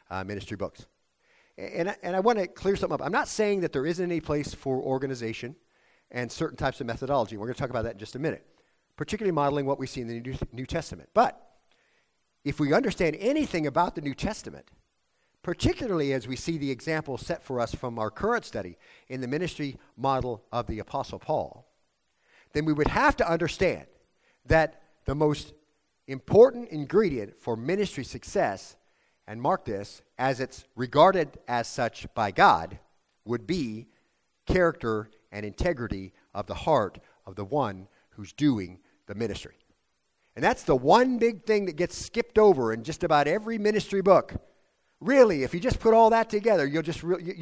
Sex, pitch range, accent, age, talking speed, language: male, 125-180 Hz, American, 50-69, 180 wpm, English